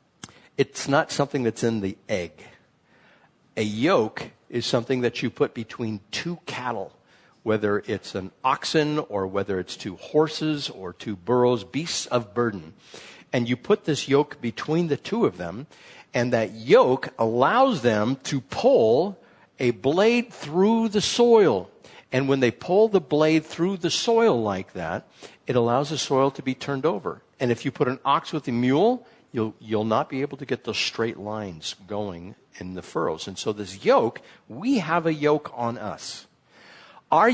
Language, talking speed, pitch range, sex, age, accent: English, 170 wpm, 105-155 Hz, male, 60-79, American